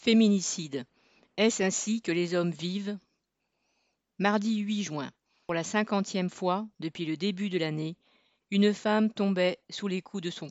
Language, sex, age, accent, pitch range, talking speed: French, female, 40-59, French, 175-215 Hz, 155 wpm